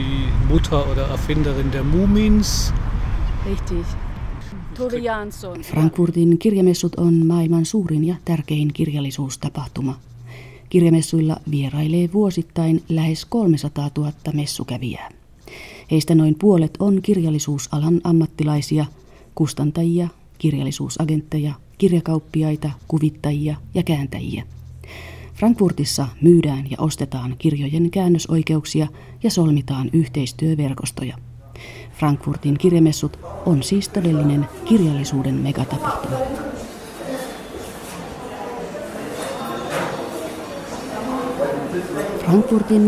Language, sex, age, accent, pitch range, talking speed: Finnish, female, 30-49, native, 145-170 Hz, 60 wpm